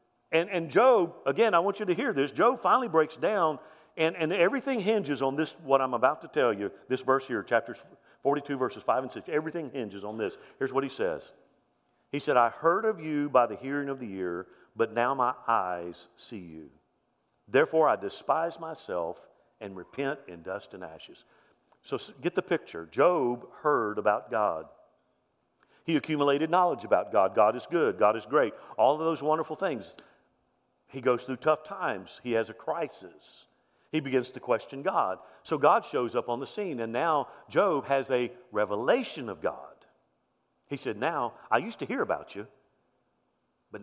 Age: 50-69